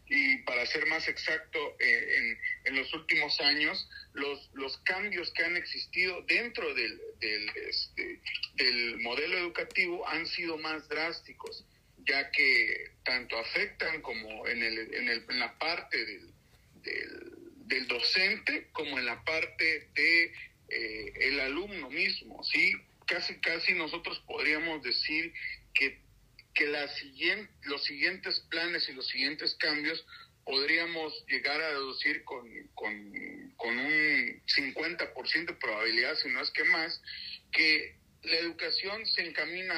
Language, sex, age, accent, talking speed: Spanish, male, 40-59, Mexican, 135 wpm